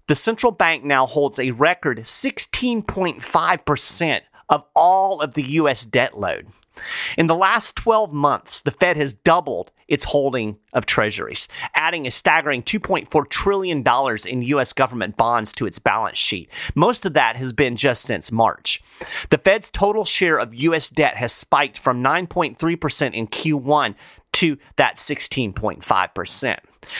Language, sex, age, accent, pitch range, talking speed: English, male, 30-49, American, 125-180 Hz, 145 wpm